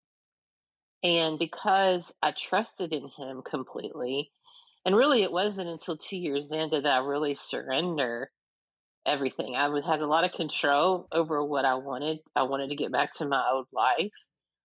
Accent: American